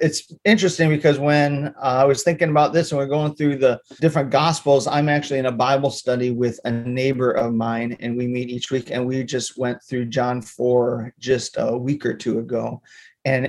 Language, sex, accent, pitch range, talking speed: English, male, American, 125-145 Hz, 205 wpm